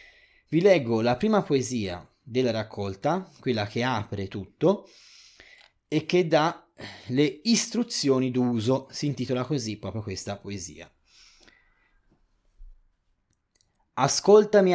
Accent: native